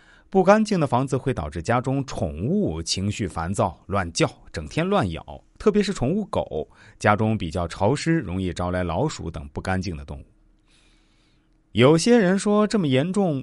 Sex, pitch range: male, 95-155 Hz